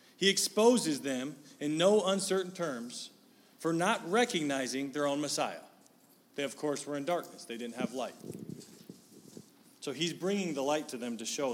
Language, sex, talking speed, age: English, male, 165 wpm, 40-59